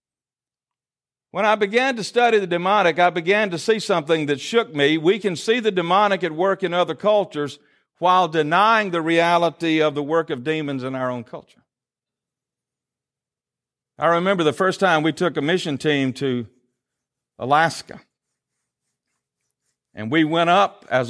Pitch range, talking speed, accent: 145-195 Hz, 155 wpm, American